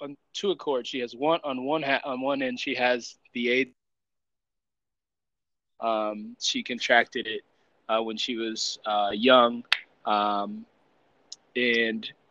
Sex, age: male, 20-39